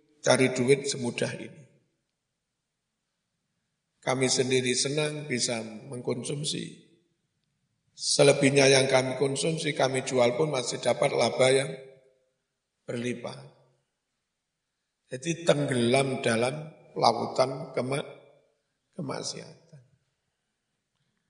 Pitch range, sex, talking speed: 130-160 Hz, male, 75 wpm